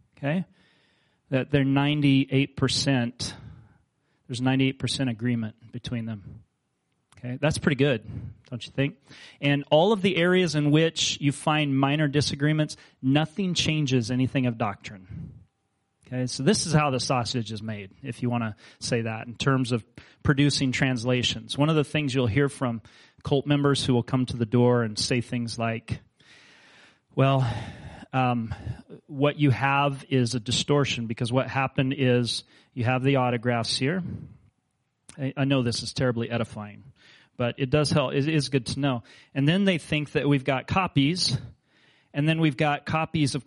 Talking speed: 165 wpm